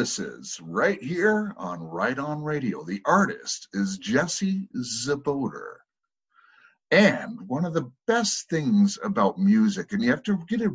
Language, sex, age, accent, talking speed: English, male, 50-69, American, 150 wpm